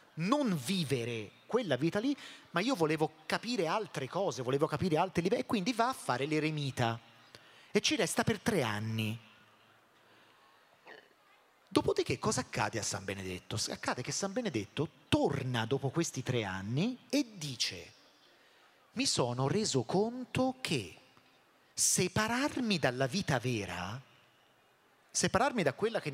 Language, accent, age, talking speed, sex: Italian, native, 30-49, 130 wpm, male